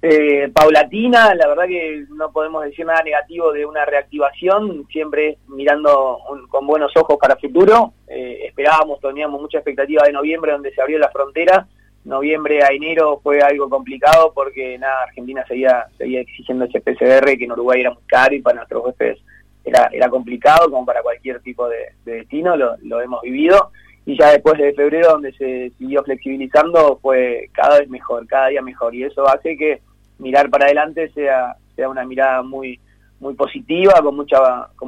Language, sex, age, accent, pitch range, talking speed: Spanish, male, 20-39, Argentinian, 130-155 Hz, 180 wpm